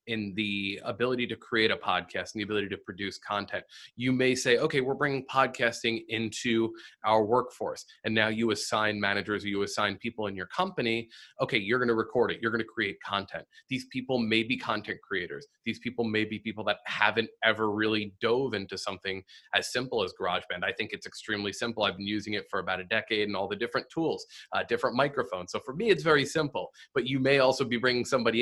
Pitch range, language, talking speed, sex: 105-125 Hz, English, 215 wpm, male